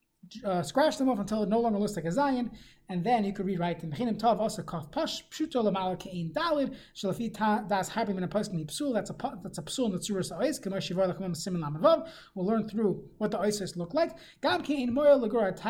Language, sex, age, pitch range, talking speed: English, male, 30-49, 190-255 Hz, 105 wpm